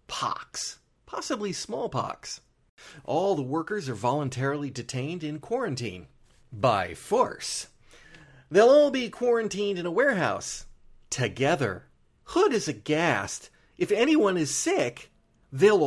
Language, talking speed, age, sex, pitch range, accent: English, 110 wpm, 40-59, male, 125-175 Hz, American